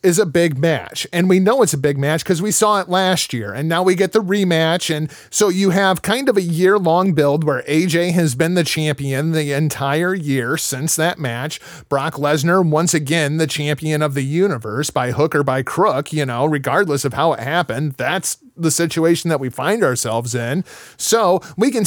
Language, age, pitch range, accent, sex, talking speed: English, 30-49, 140-175 Hz, American, male, 210 wpm